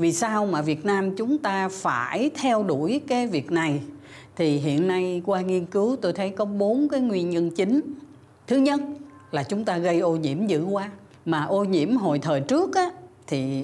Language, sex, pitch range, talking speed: Vietnamese, female, 155-235 Hz, 195 wpm